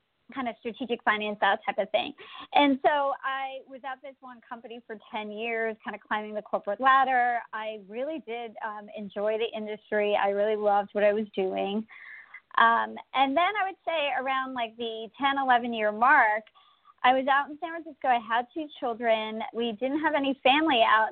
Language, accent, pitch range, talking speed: English, American, 225-290 Hz, 190 wpm